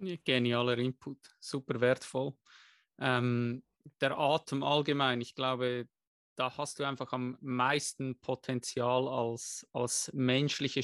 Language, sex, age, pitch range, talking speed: German, male, 20-39, 130-155 Hz, 110 wpm